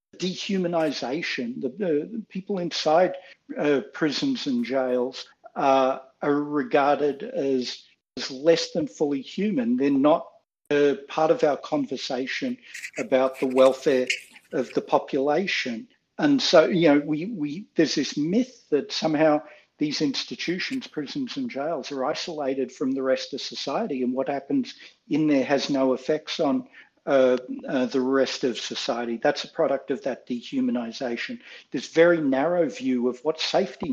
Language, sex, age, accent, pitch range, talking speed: English, male, 60-79, Australian, 135-205 Hz, 145 wpm